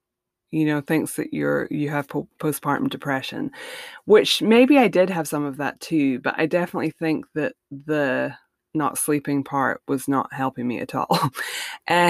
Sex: female